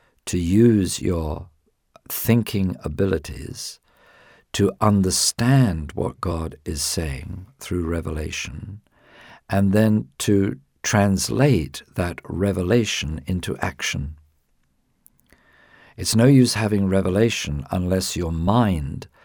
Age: 50-69